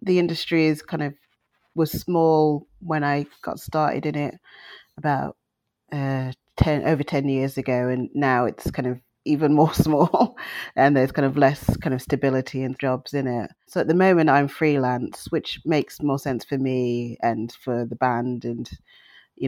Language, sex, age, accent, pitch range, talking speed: English, female, 30-49, British, 125-150 Hz, 180 wpm